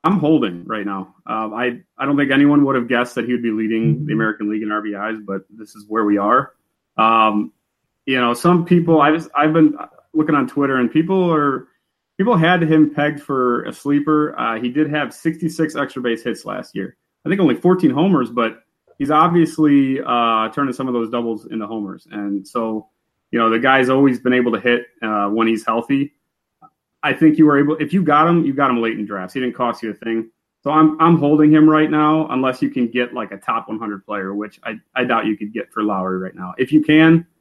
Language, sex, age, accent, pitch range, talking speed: English, male, 30-49, American, 110-145 Hz, 230 wpm